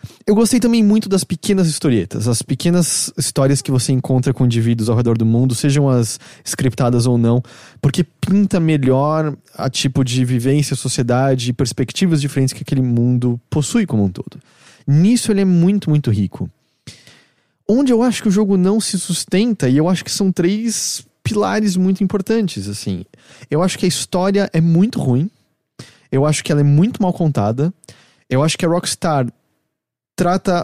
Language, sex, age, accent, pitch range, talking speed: English, male, 20-39, Brazilian, 130-195 Hz, 170 wpm